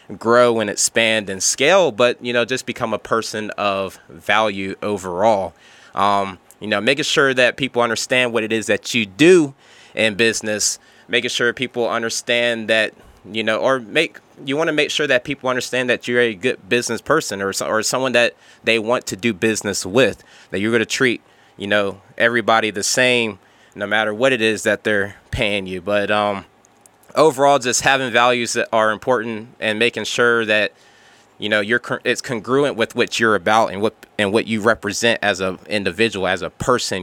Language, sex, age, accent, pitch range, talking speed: English, male, 20-39, American, 105-125 Hz, 190 wpm